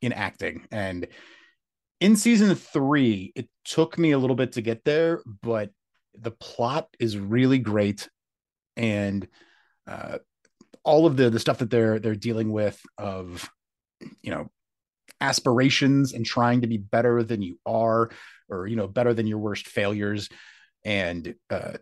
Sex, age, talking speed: male, 30-49, 150 wpm